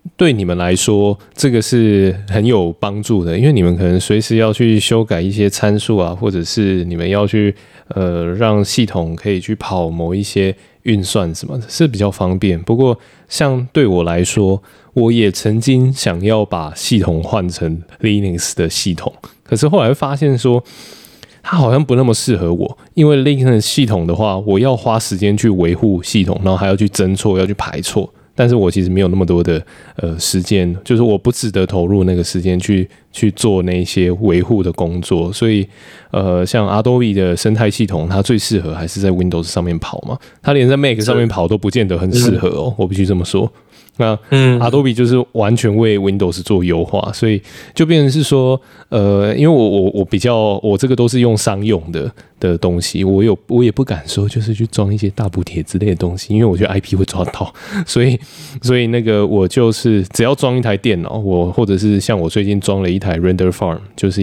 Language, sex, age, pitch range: Chinese, male, 20-39, 90-115 Hz